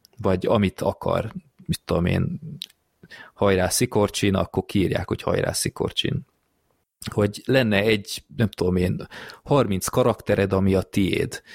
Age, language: 30-49, Hungarian